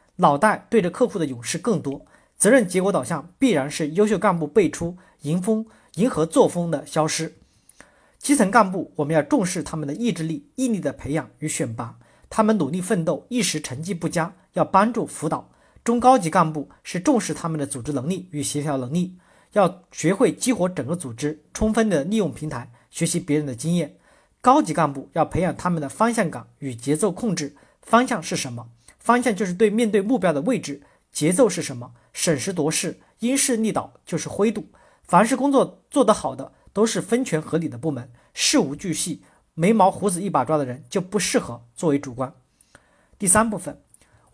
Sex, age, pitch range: male, 50-69, 150-215 Hz